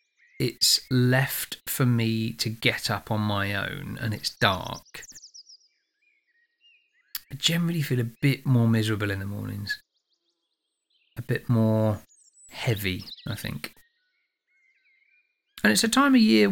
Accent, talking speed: British, 125 wpm